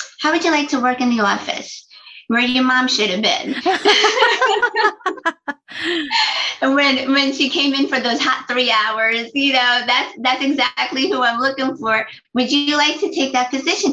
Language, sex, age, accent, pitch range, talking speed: English, female, 30-49, American, 225-290 Hz, 180 wpm